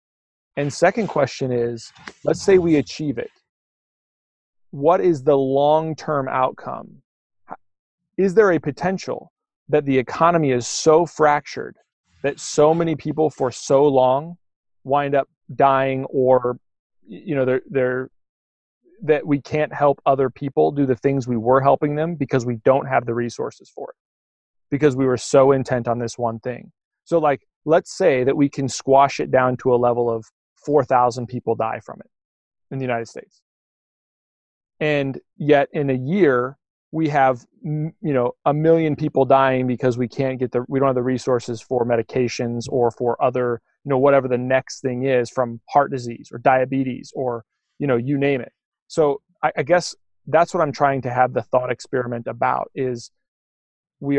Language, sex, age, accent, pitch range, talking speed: English, male, 30-49, American, 125-150 Hz, 170 wpm